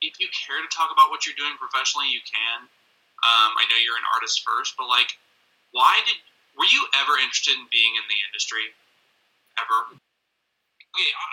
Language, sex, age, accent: English, male, 20-39, American